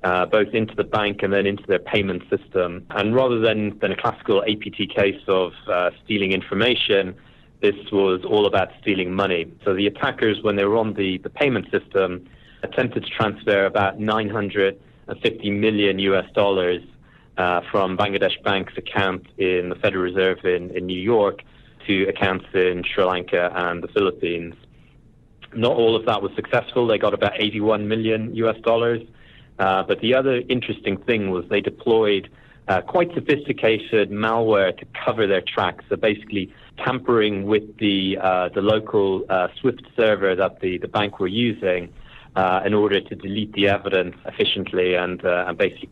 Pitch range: 95-110 Hz